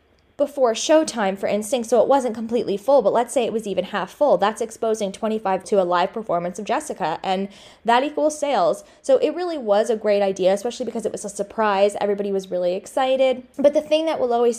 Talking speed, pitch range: 220 wpm, 195-245 Hz